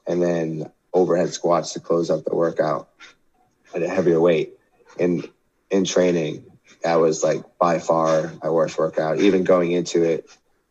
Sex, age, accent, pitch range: male, 20-39, American, 85-90 Hz